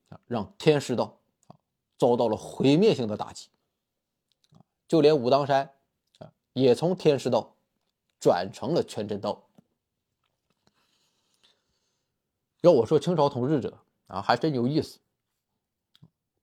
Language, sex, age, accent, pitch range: Chinese, male, 20-39, native, 120-155 Hz